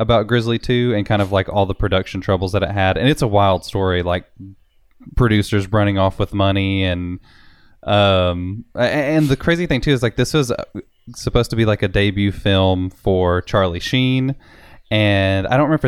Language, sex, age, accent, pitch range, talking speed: English, male, 20-39, American, 95-115 Hz, 190 wpm